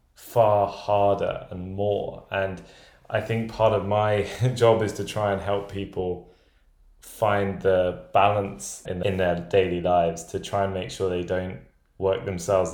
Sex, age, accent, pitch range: male, 20-39, British, 90-105 Hz